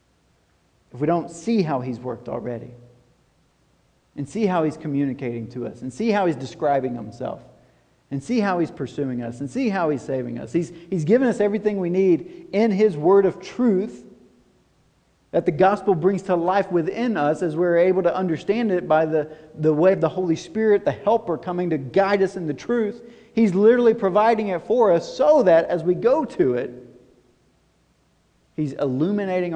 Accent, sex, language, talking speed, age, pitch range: American, male, English, 185 wpm, 40-59, 135-190 Hz